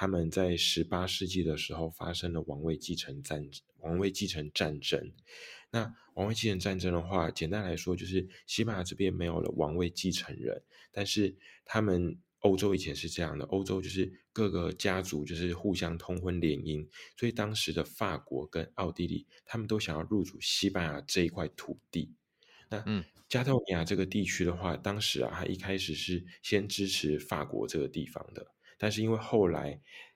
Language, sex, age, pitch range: Chinese, male, 20-39, 80-100 Hz